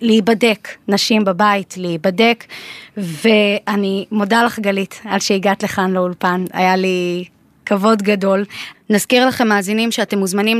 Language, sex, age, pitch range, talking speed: Hebrew, female, 20-39, 185-215 Hz, 120 wpm